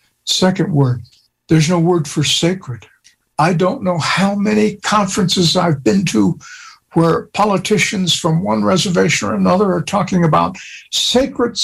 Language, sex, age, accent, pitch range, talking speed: English, male, 60-79, American, 140-180 Hz, 140 wpm